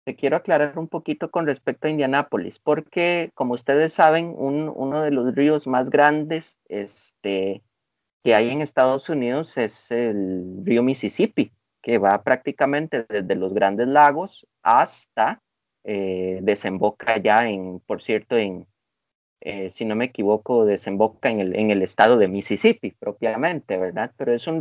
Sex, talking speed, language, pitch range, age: male, 155 wpm, Spanish, 110-170 Hz, 30-49